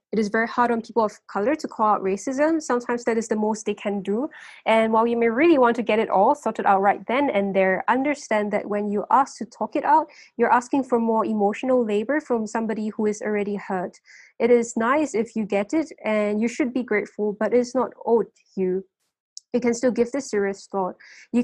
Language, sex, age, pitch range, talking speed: English, female, 10-29, 205-240 Hz, 230 wpm